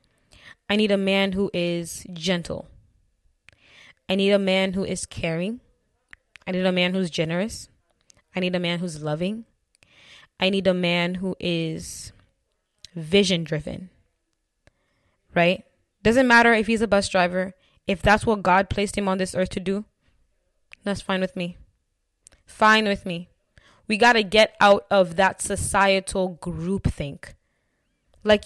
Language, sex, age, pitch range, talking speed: English, female, 10-29, 180-235 Hz, 145 wpm